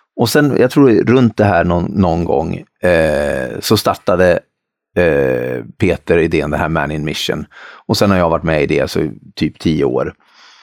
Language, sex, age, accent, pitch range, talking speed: Swedish, male, 30-49, native, 85-115 Hz, 190 wpm